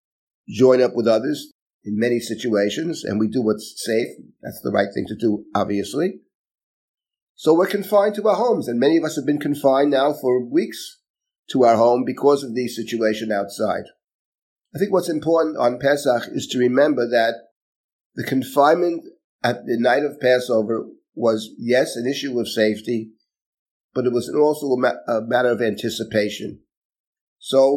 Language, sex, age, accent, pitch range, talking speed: English, male, 50-69, American, 115-135 Hz, 165 wpm